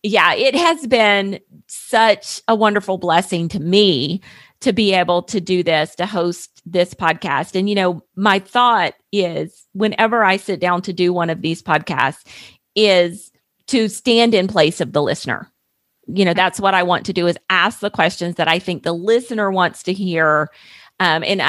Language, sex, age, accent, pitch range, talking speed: English, female, 40-59, American, 165-200 Hz, 185 wpm